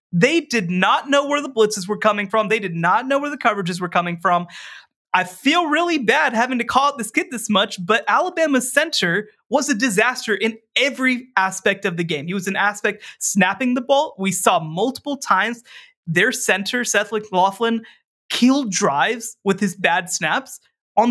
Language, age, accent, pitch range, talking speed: English, 20-39, American, 190-240 Hz, 190 wpm